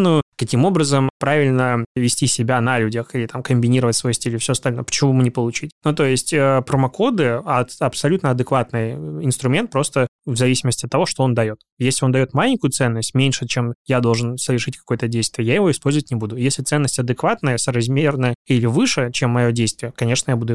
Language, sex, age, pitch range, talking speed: Russian, male, 20-39, 125-150 Hz, 185 wpm